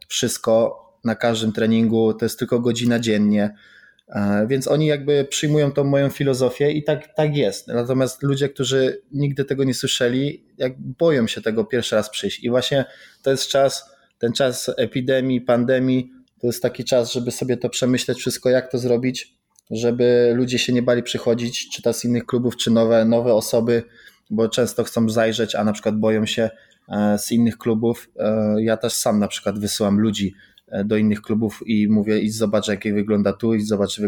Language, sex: Polish, male